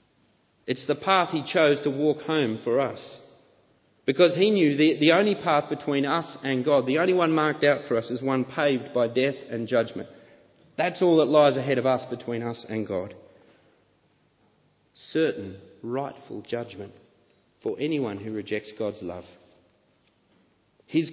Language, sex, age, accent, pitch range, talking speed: English, male, 40-59, Australian, 110-145 Hz, 160 wpm